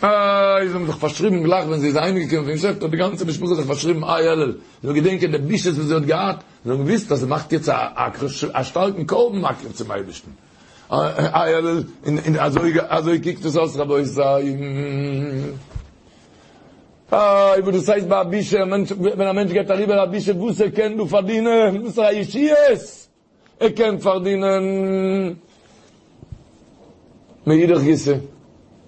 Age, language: 60-79, Hebrew